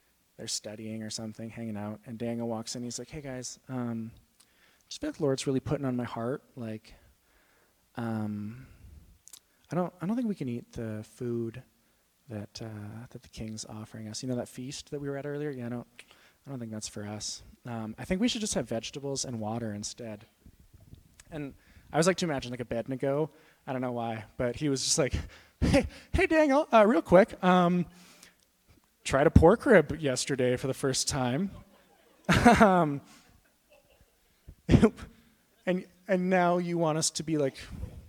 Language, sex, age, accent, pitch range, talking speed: English, male, 20-39, American, 110-155 Hz, 185 wpm